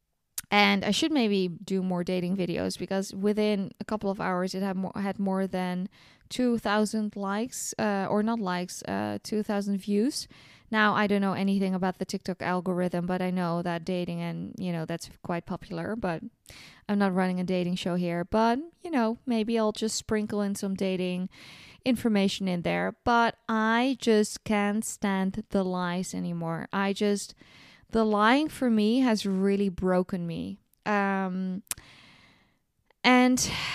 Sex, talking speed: female, 160 wpm